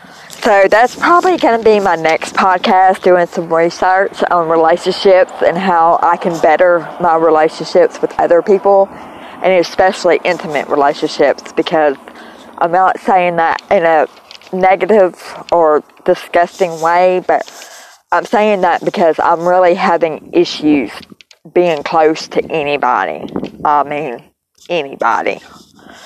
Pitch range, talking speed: 170-205 Hz, 125 wpm